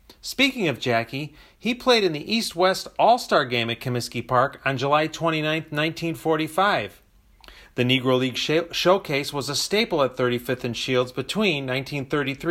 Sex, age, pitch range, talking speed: male, 40-59, 130-180 Hz, 145 wpm